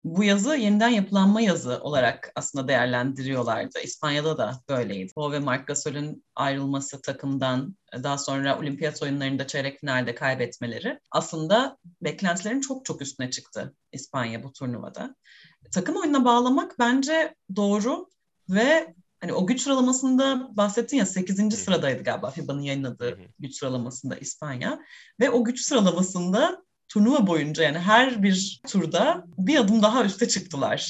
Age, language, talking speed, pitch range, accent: 30-49, Turkish, 130 wpm, 140-220 Hz, native